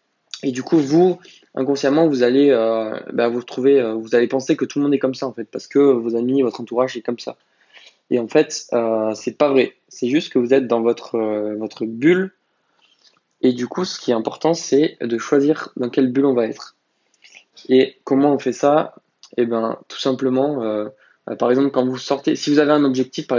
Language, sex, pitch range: French, male, 115-135 Hz